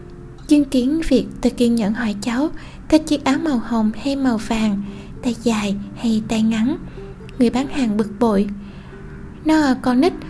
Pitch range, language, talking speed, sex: 220-270 Hz, Vietnamese, 170 wpm, female